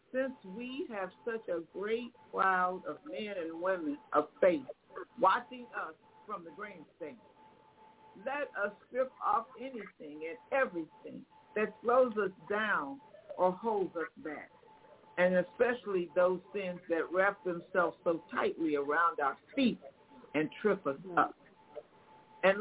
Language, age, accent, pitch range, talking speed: English, 50-69, American, 180-245 Hz, 135 wpm